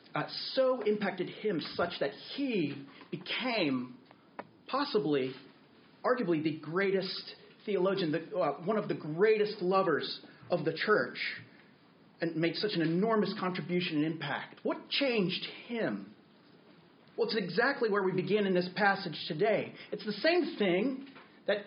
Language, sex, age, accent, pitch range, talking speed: English, male, 40-59, American, 175-225 Hz, 135 wpm